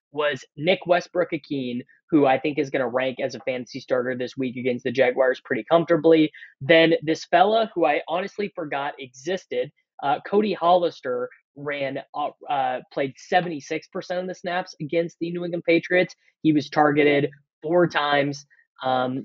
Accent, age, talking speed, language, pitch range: American, 20-39, 160 wpm, English, 135-170 Hz